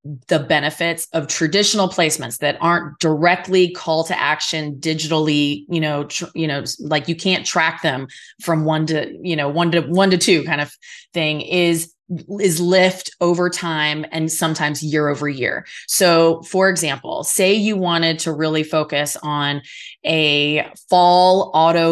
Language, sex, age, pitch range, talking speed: English, female, 20-39, 150-175 Hz, 160 wpm